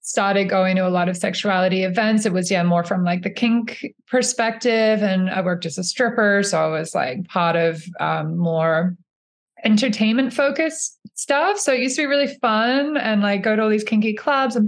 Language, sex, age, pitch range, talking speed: English, female, 20-39, 165-205 Hz, 205 wpm